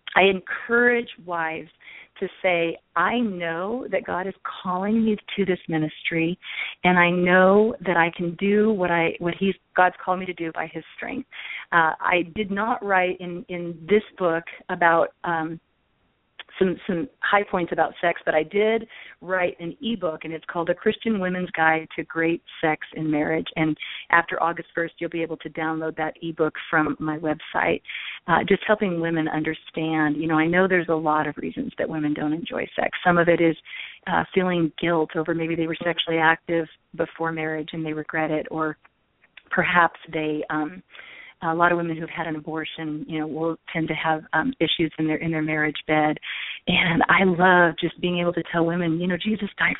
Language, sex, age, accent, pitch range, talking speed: English, female, 40-59, American, 160-190 Hz, 195 wpm